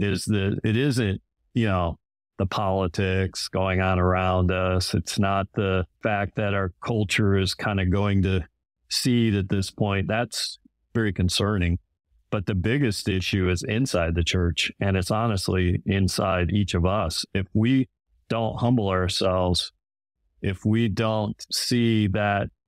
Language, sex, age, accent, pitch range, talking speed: English, male, 50-69, American, 95-110 Hz, 150 wpm